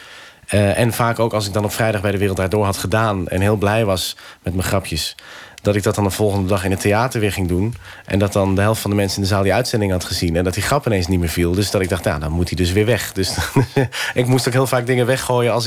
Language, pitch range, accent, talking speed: Dutch, 100-125 Hz, Dutch, 300 wpm